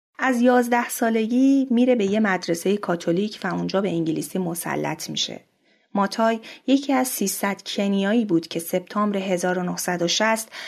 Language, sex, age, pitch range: Persian, female, 30-49, 185-230 Hz